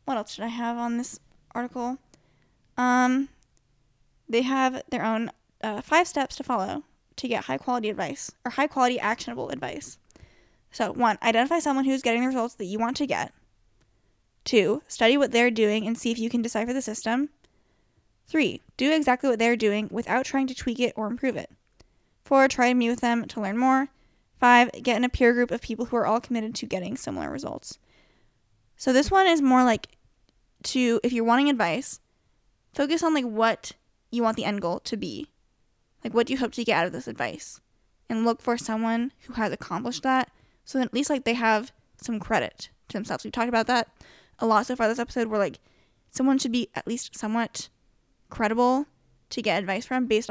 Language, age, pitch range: English, 10-29, 225-260 Hz